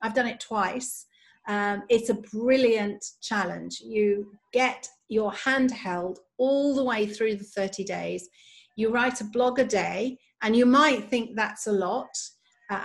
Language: English